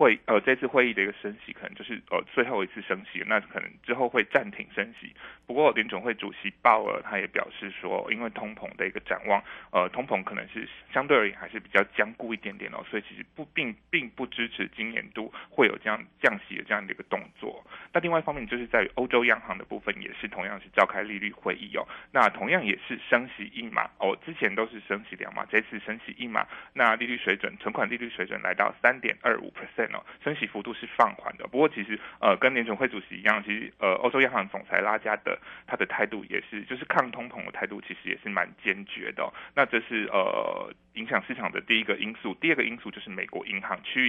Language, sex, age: Chinese, male, 20-39